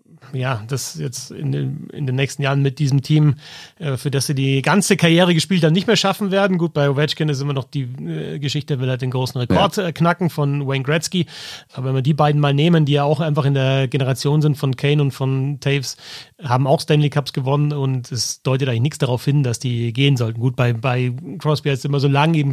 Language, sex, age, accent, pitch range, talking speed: German, male, 30-49, German, 135-155 Hz, 240 wpm